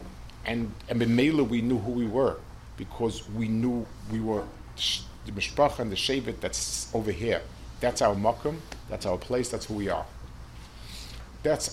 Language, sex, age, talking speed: English, male, 50-69, 160 wpm